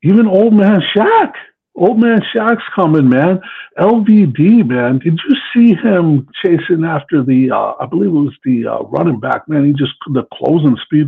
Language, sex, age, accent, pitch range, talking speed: English, male, 60-79, American, 130-190 Hz, 180 wpm